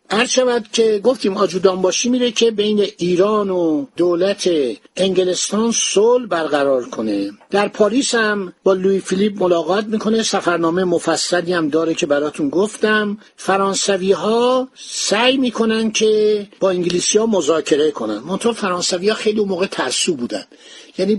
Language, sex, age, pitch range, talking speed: Persian, male, 60-79, 175-220 Hz, 135 wpm